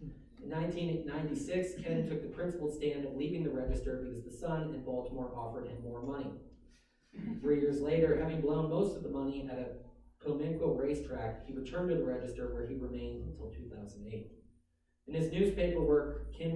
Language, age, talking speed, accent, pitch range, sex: English, 30-49, 175 wpm, American, 125-150 Hz, male